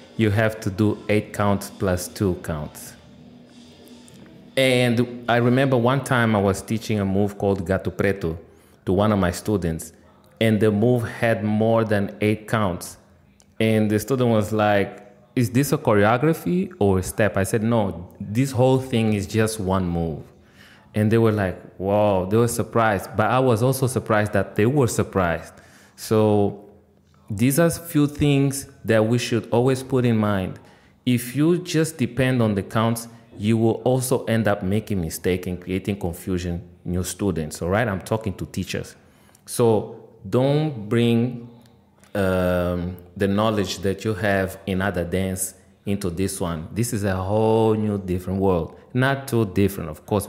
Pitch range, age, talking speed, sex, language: 95-115 Hz, 30-49, 165 wpm, male, English